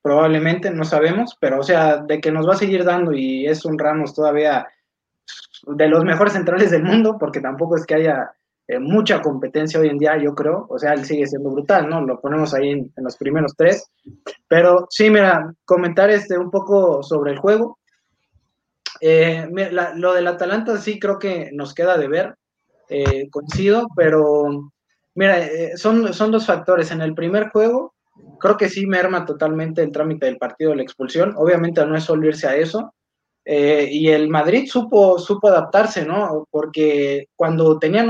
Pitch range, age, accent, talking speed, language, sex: 150-185 Hz, 20-39, Mexican, 185 wpm, Spanish, male